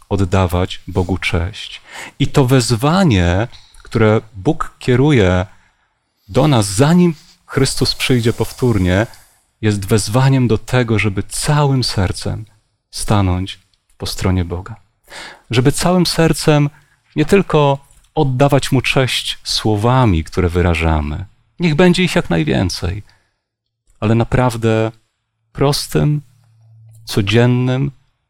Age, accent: 30-49, native